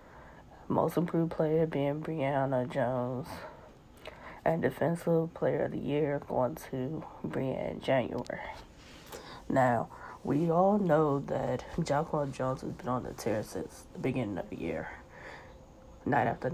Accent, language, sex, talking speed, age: American, English, female, 130 wpm, 20-39